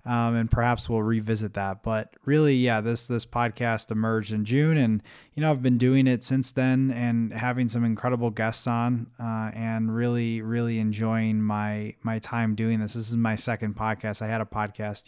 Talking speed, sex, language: 195 wpm, male, English